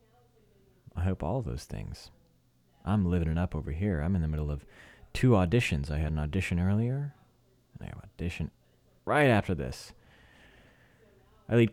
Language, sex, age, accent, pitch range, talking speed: English, male, 30-49, American, 80-110 Hz, 170 wpm